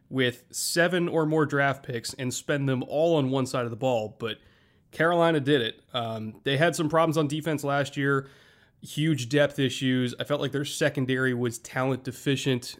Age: 20-39